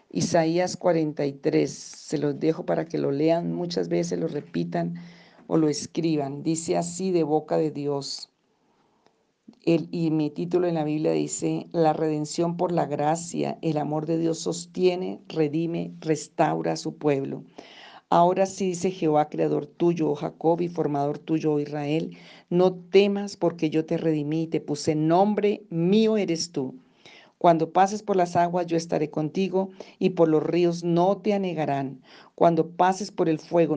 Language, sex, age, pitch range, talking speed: Spanish, female, 50-69, 150-180 Hz, 160 wpm